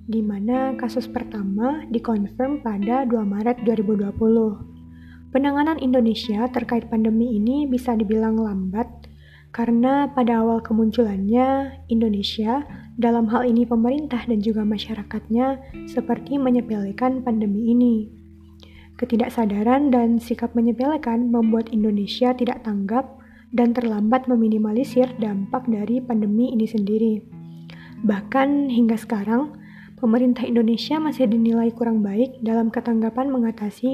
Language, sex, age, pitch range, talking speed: Indonesian, female, 20-39, 215-250 Hz, 105 wpm